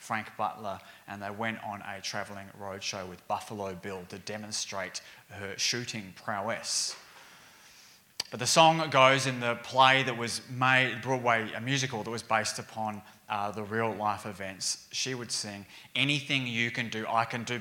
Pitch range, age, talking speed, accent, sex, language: 110-135 Hz, 20-39, 165 wpm, Australian, male, English